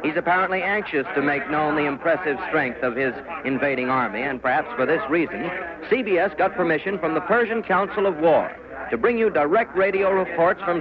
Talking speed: 190 wpm